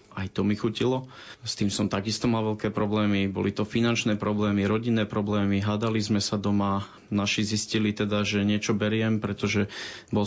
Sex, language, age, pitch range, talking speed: male, Slovak, 30-49, 105-115 Hz, 170 wpm